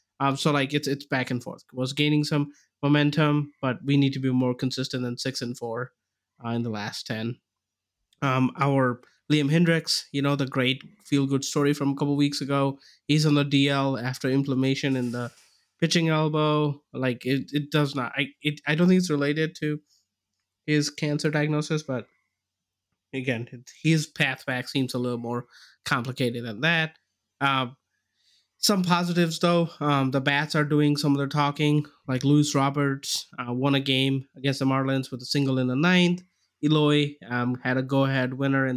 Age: 20-39